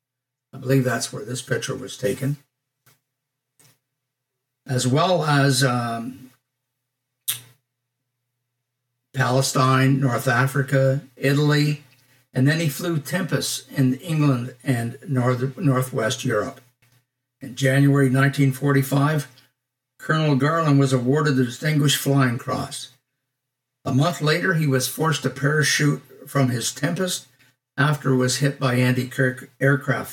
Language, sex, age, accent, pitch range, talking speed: English, male, 60-79, American, 130-140 Hz, 110 wpm